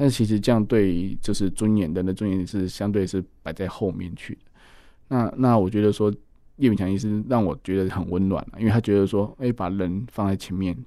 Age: 20-39